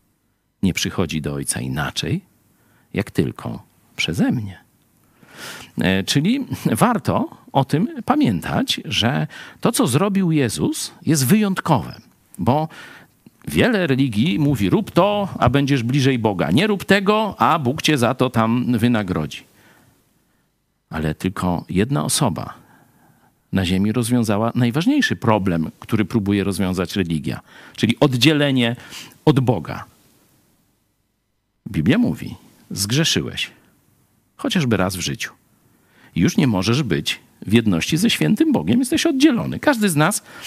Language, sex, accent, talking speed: Polish, male, native, 120 wpm